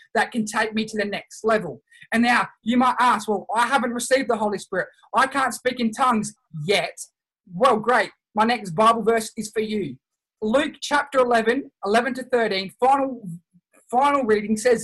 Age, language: 20-39, English